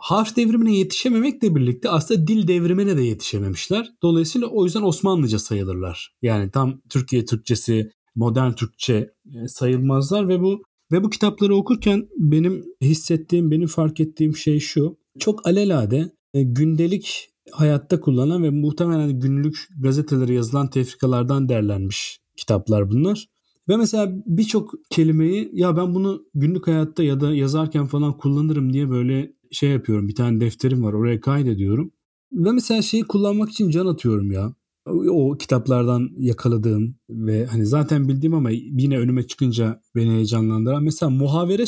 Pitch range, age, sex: 125-185 Hz, 40-59, male